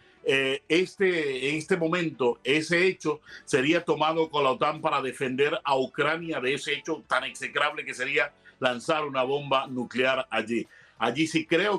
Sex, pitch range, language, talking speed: male, 130-160 Hz, Spanish, 160 wpm